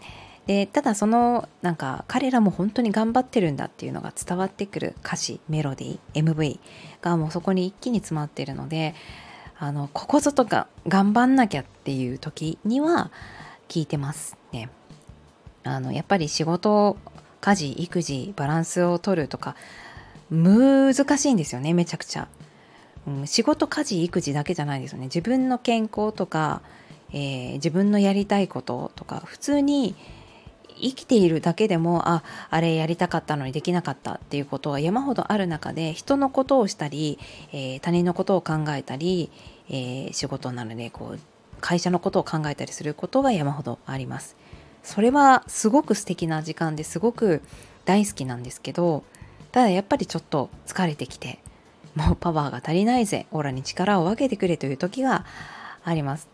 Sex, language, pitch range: female, Japanese, 145-210 Hz